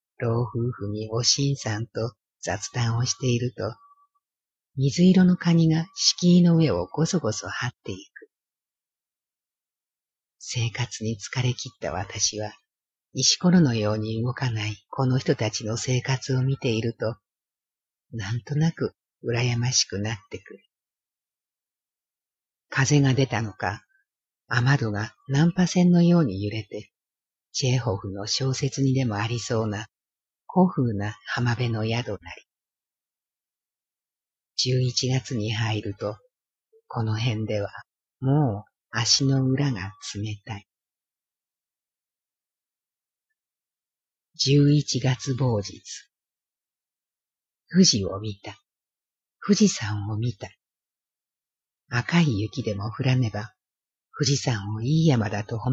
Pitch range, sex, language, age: 110-140 Hz, female, Japanese, 50-69